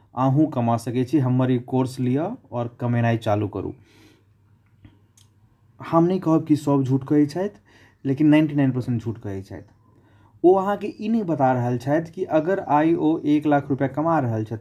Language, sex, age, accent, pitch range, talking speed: English, male, 30-49, Indian, 115-150 Hz, 170 wpm